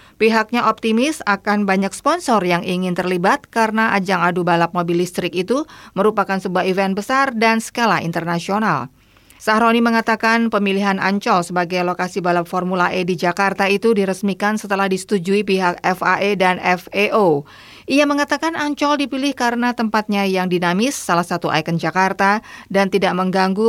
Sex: female